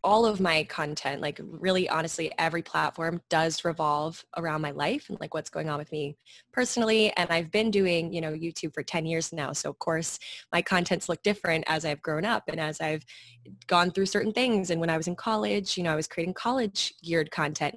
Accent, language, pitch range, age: American, English, 160-195 Hz, 20-39